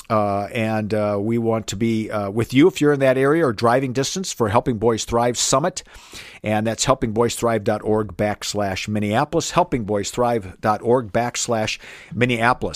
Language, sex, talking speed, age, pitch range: English, male, 145 wpm, 50-69, 110-150 Hz